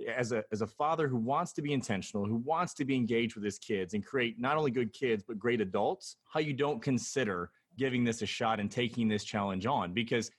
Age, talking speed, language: 30-49, 235 wpm, English